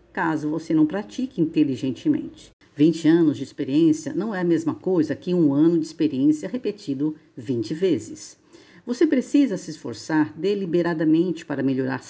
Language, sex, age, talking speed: Portuguese, female, 50-69, 145 wpm